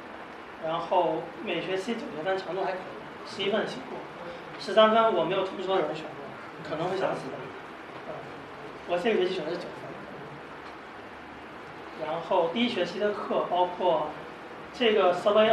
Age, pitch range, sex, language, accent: 30-49, 165-205 Hz, male, Chinese, native